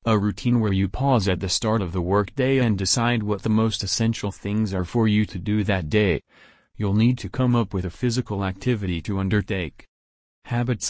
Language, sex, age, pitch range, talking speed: English, male, 30-49, 95-115 Hz, 205 wpm